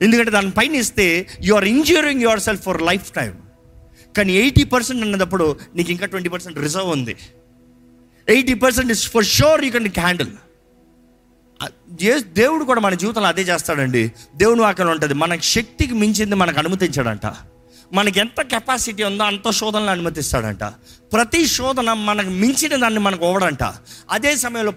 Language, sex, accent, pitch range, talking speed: Telugu, male, native, 140-230 Hz, 155 wpm